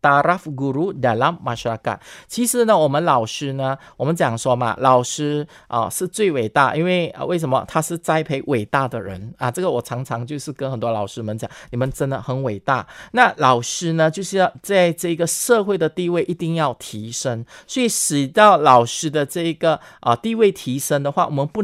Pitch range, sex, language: 135-185 Hz, male, Chinese